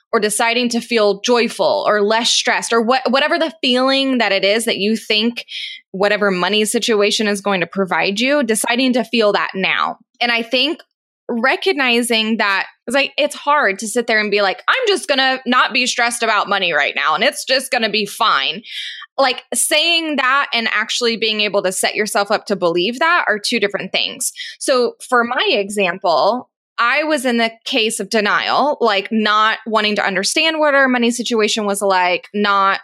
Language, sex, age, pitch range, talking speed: English, female, 20-39, 205-265 Hz, 190 wpm